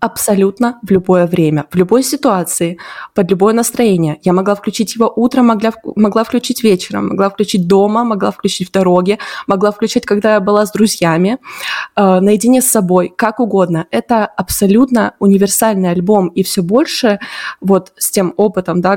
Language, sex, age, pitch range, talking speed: Russian, female, 20-39, 185-225 Hz, 160 wpm